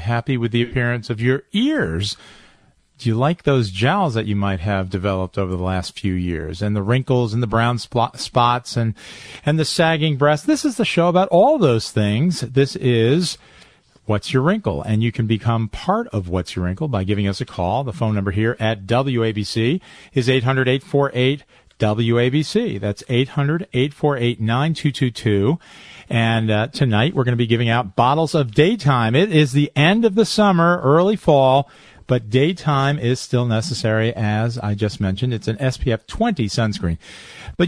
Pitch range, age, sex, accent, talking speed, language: 115-150 Hz, 40-59, male, American, 175 wpm, English